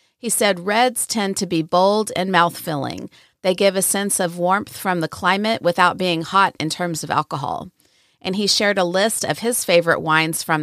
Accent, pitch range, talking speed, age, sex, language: American, 165-195 Hz, 200 wpm, 40-59, female, English